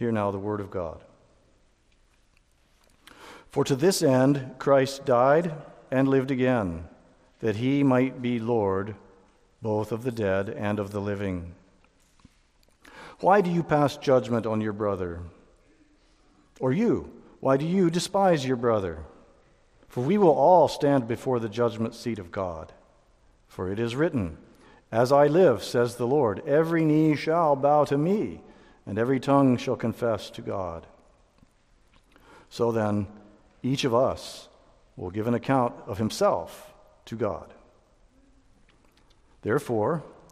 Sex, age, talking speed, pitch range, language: male, 50-69, 135 wpm, 105-145 Hz, English